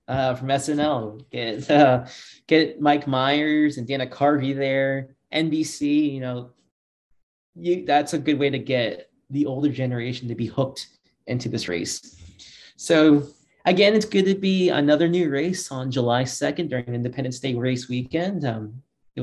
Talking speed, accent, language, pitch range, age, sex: 150 wpm, American, English, 125-155 Hz, 20-39, male